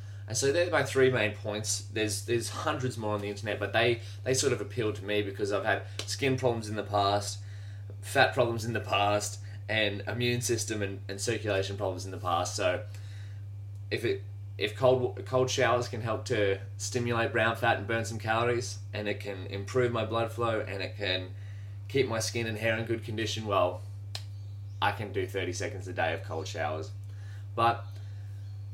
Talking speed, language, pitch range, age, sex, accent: 190 wpm, English, 100-110 Hz, 20-39, male, Australian